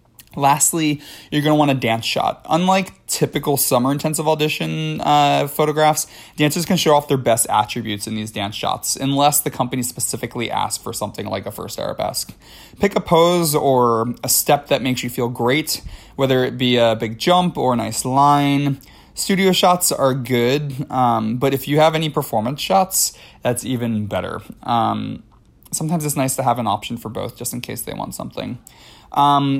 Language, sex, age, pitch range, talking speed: English, male, 20-39, 120-150 Hz, 180 wpm